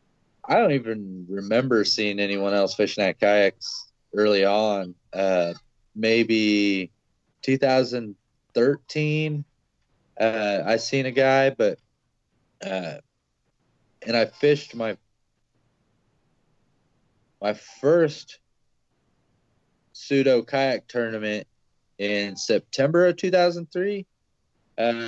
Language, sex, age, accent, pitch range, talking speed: English, male, 30-49, American, 100-135 Hz, 85 wpm